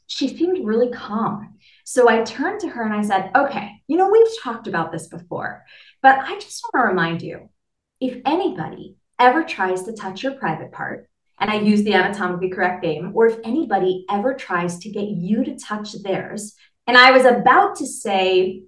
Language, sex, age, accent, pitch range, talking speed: English, female, 30-49, American, 200-335 Hz, 195 wpm